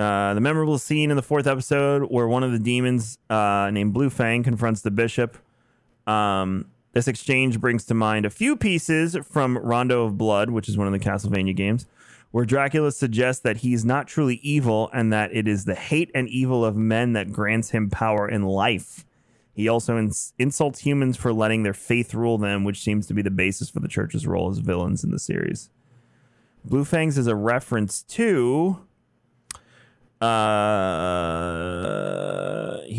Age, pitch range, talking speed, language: 30-49, 105-125 Hz, 175 wpm, English